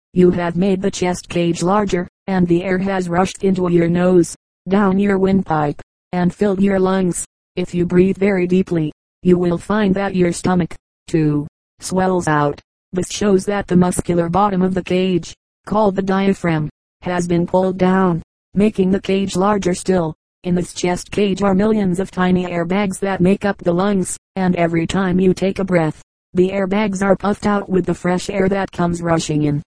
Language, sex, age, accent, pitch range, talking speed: English, female, 40-59, American, 175-195 Hz, 185 wpm